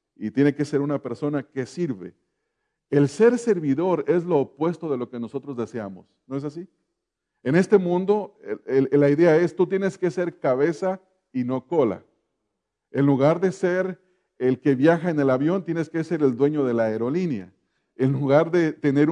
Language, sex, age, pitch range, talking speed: English, male, 40-59, 130-175 Hz, 190 wpm